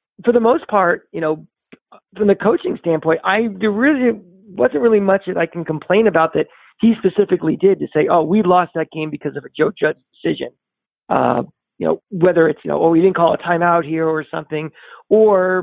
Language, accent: English, American